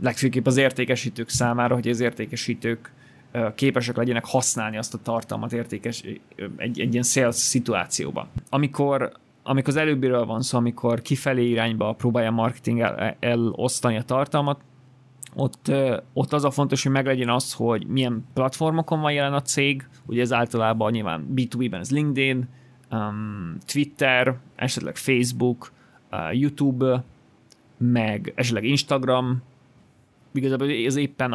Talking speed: 130 wpm